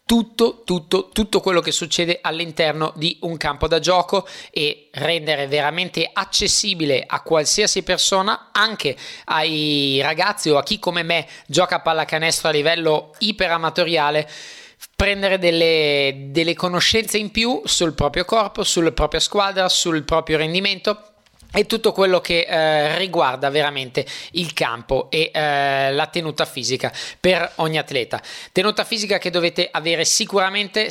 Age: 20-39